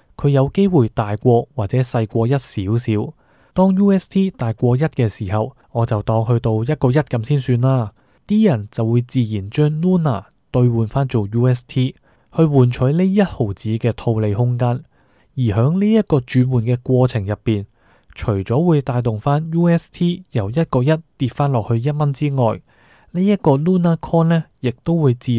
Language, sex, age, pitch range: Chinese, male, 20-39, 115-155 Hz